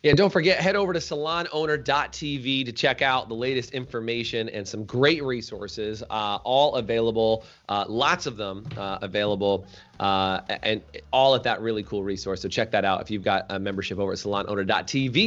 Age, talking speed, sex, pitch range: 30-49, 180 wpm, male, 100-145 Hz